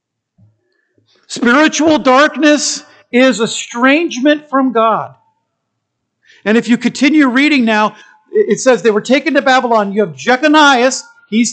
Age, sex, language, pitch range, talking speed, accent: 50-69, male, English, 190-245 Hz, 120 wpm, American